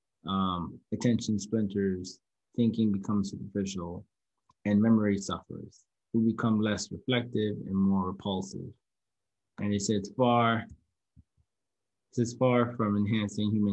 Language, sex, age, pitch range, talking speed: English, male, 20-39, 95-110 Hz, 115 wpm